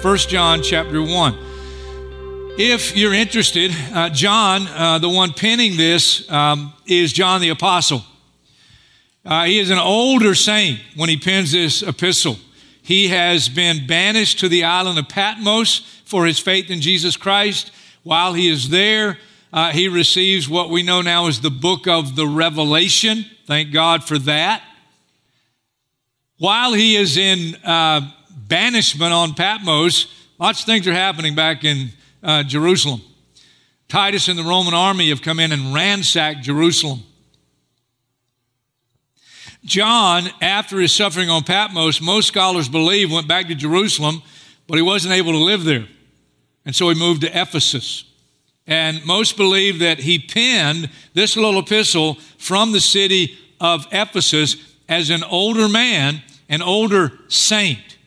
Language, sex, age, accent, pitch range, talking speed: English, male, 50-69, American, 150-190 Hz, 145 wpm